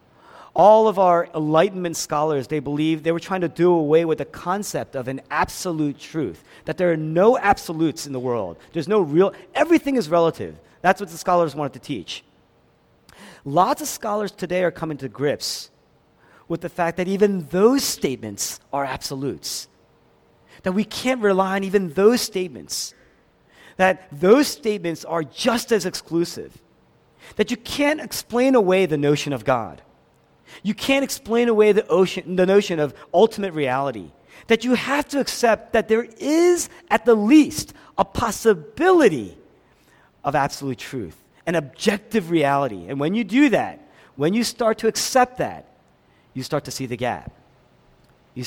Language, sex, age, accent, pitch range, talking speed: English, male, 40-59, American, 140-215 Hz, 160 wpm